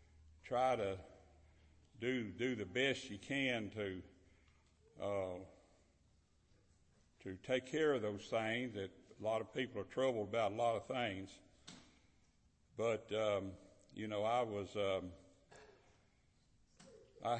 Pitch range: 95-120 Hz